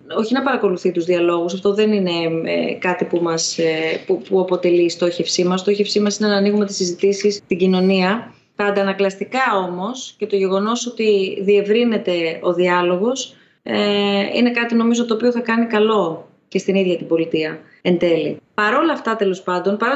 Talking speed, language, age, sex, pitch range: 180 wpm, Greek, 20-39, female, 175-230 Hz